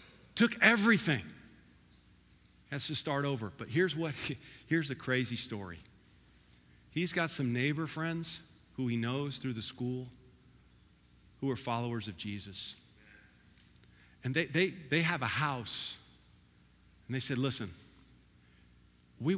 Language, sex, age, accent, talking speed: English, male, 50-69, American, 135 wpm